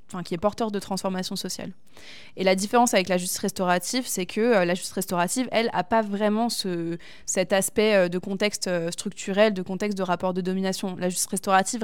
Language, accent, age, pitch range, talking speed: French, French, 20-39, 185-220 Hz, 195 wpm